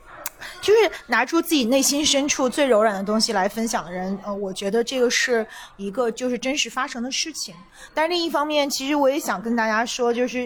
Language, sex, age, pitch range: Chinese, female, 20-39, 220-275 Hz